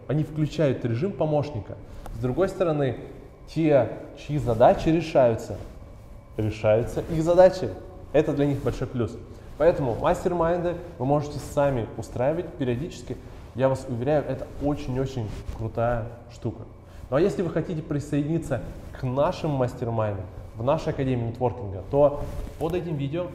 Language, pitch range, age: Russian, 110-145 Hz, 20-39